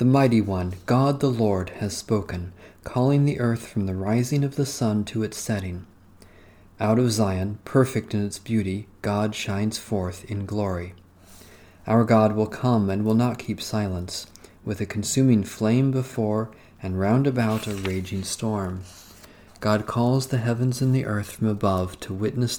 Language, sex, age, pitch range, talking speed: English, male, 40-59, 95-115 Hz, 165 wpm